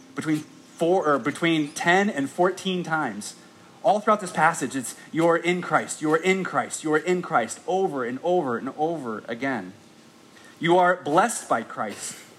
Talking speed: 160 wpm